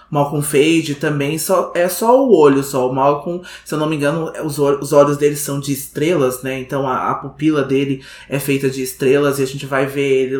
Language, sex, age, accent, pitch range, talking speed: Portuguese, male, 20-39, Brazilian, 135-165 Hz, 235 wpm